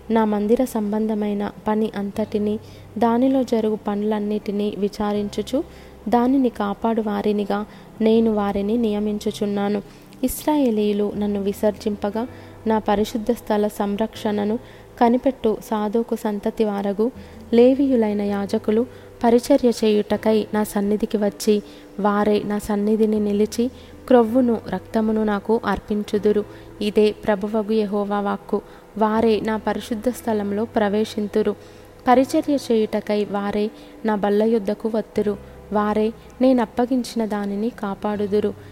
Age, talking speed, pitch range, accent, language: 20-39, 95 wpm, 205-225 Hz, native, Telugu